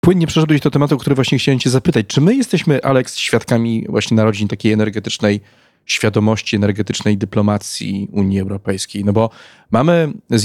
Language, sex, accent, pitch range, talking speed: Polish, male, native, 105-115 Hz, 165 wpm